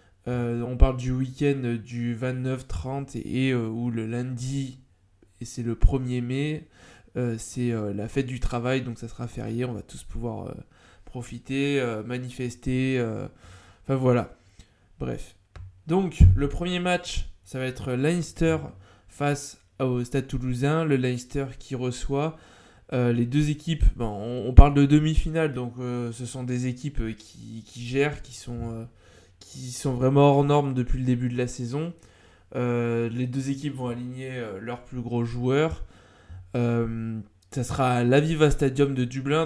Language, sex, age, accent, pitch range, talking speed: French, male, 20-39, French, 115-140 Hz, 165 wpm